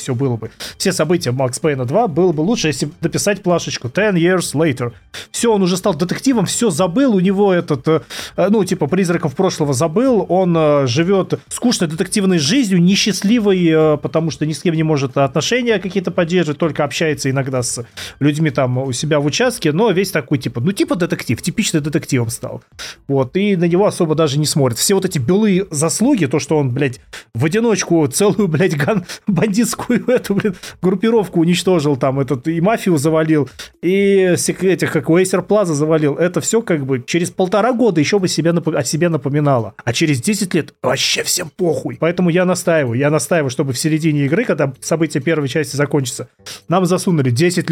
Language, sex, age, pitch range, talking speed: Russian, male, 30-49, 150-195 Hz, 180 wpm